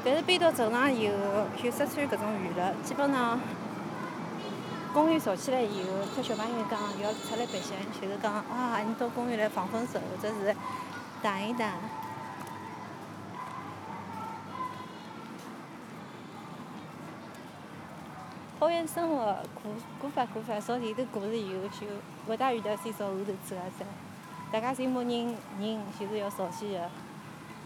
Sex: female